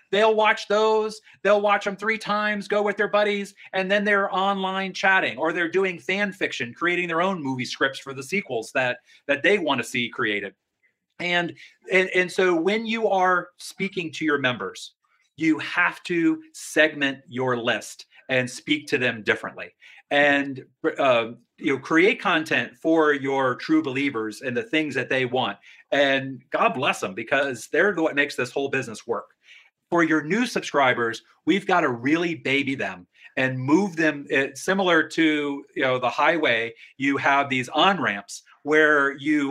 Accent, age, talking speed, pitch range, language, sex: American, 40-59, 165 wpm, 140-205 Hz, English, male